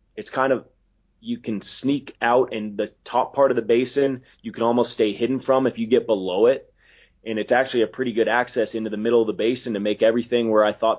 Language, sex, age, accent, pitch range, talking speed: English, male, 30-49, American, 105-120 Hz, 240 wpm